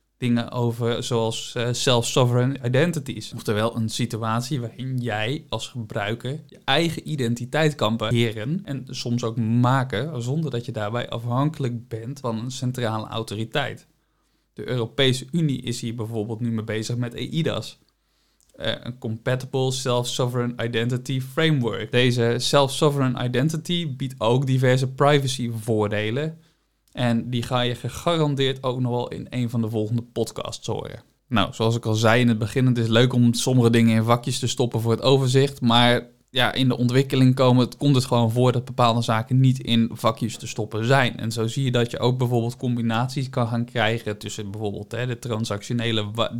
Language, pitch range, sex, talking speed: Dutch, 115-130 Hz, male, 170 wpm